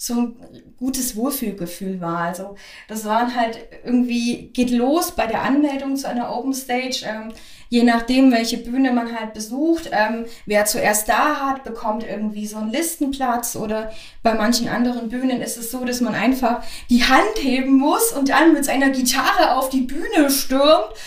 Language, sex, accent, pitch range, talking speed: German, female, German, 235-275 Hz, 175 wpm